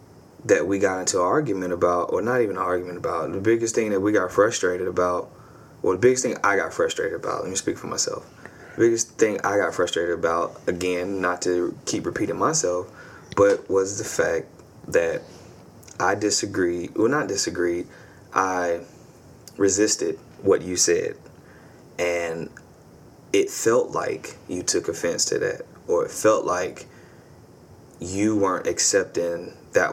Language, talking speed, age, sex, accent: English, 160 wpm, 20-39, male, American